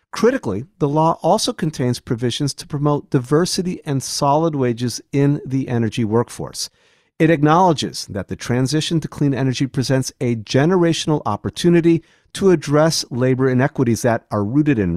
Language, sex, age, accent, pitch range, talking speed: English, male, 50-69, American, 120-160 Hz, 145 wpm